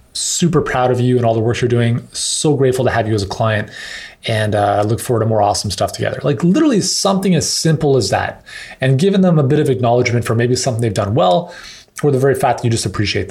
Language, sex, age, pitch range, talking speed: English, male, 20-39, 120-150 Hz, 255 wpm